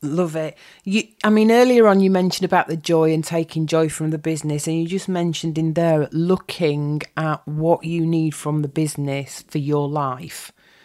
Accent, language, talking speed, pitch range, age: British, English, 195 wpm, 155-190 Hz, 40-59